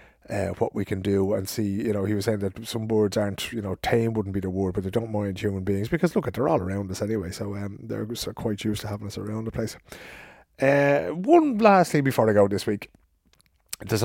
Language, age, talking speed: English, 30-49, 250 wpm